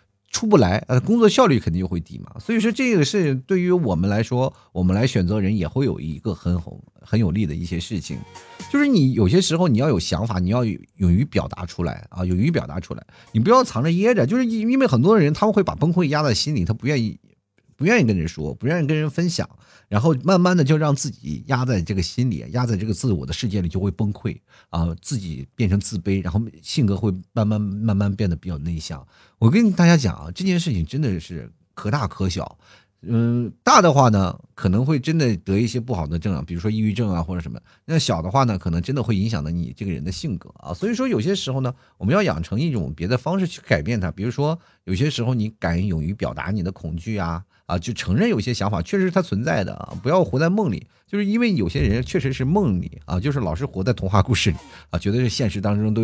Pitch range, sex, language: 95-145 Hz, male, Chinese